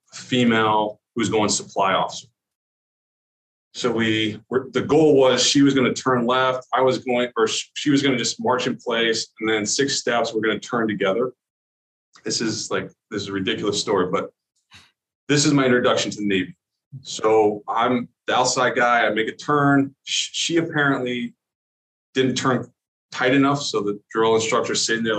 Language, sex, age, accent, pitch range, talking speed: English, male, 30-49, American, 105-140 Hz, 180 wpm